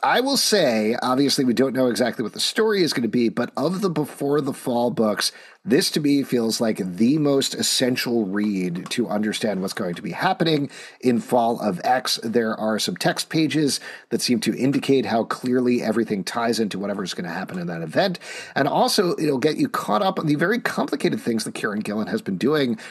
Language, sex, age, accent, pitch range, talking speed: English, male, 40-59, American, 120-155 Hz, 210 wpm